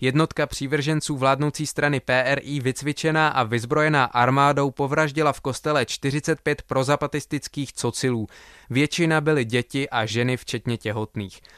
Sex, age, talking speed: male, 20-39, 115 wpm